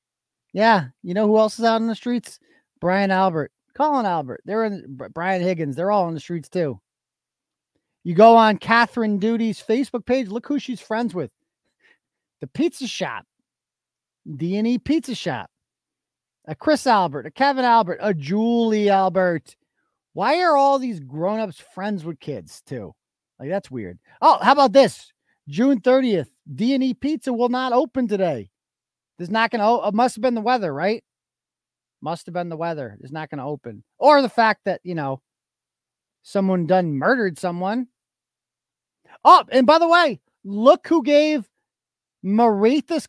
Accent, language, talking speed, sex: American, English, 160 wpm, male